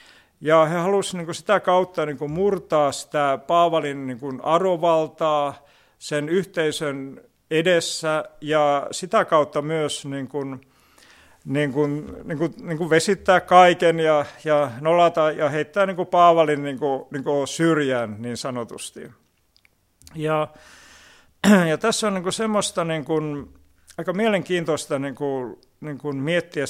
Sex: male